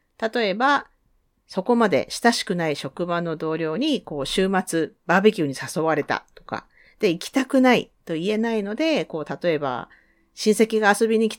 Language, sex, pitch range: Japanese, female, 170-270 Hz